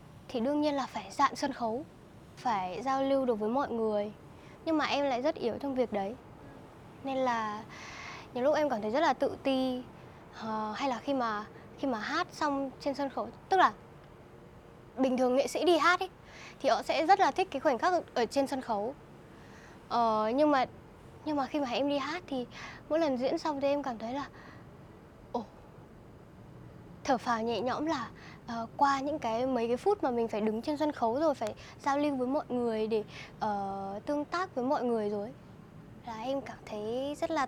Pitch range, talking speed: 235-300 Hz, 205 wpm